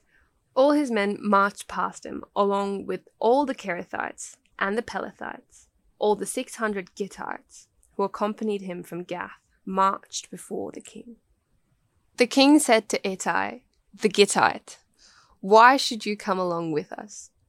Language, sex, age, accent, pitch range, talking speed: English, female, 10-29, Australian, 185-230 Hz, 145 wpm